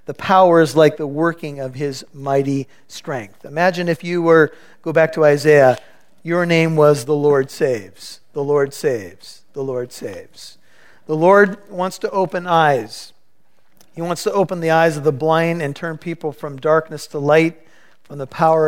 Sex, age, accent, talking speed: male, 50-69, American, 175 wpm